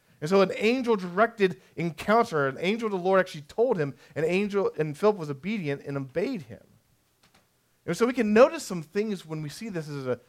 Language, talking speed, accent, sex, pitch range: English, 205 wpm, American, male, 150-225 Hz